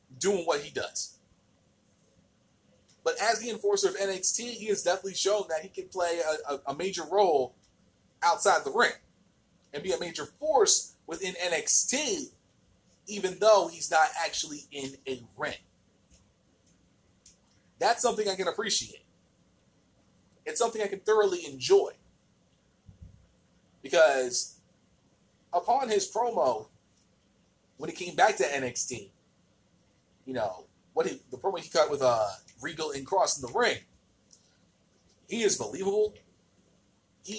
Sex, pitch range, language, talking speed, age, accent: male, 140-235 Hz, English, 135 wpm, 30-49, American